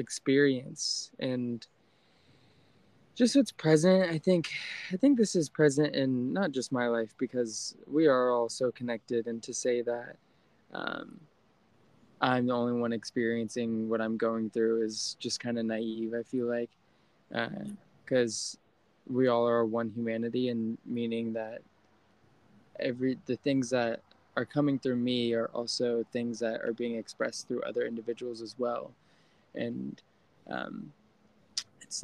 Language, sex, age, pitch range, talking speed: English, male, 20-39, 115-130 Hz, 145 wpm